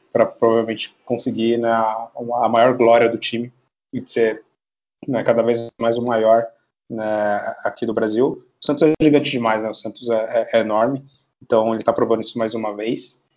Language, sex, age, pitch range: Portuguese, male, 20-39, 110-120 Hz